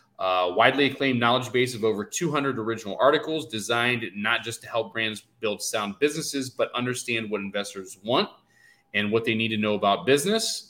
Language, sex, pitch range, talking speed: English, male, 105-130 Hz, 180 wpm